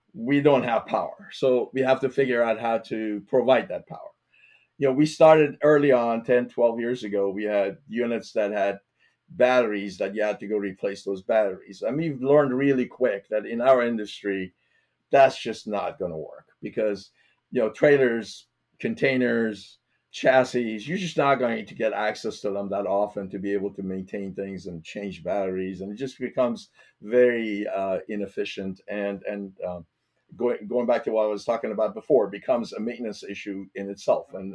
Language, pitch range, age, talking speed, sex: English, 100-125 Hz, 50-69, 185 wpm, male